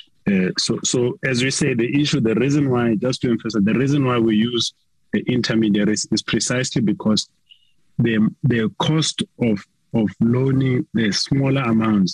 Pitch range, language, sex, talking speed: 100-125 Hz, English, male, 160 wpm